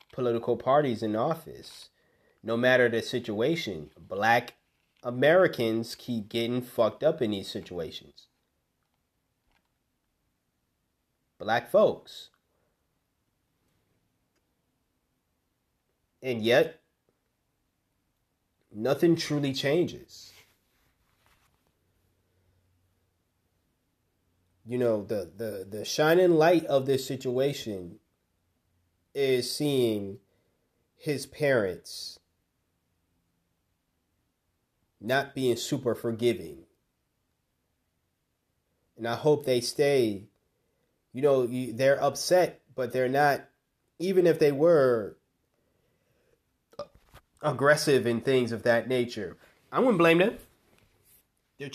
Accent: American